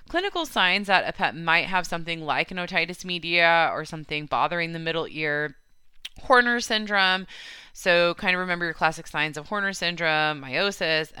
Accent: American